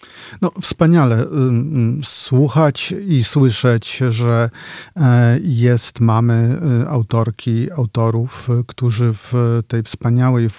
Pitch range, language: 115-135 Hz, Polish